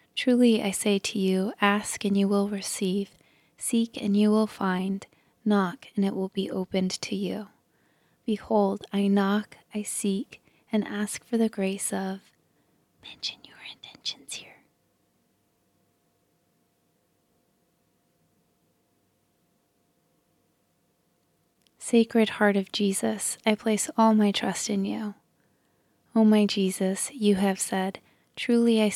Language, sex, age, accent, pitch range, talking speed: English, female, 20-39, American, 195-220 Hz, 120 wpm